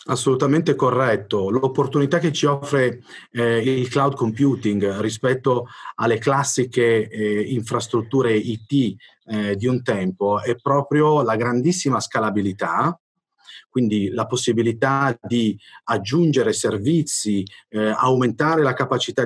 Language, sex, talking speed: Italian, male, 110 wpm